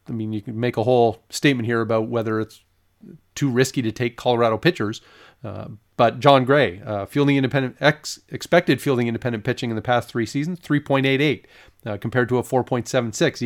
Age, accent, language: 30-49, American, English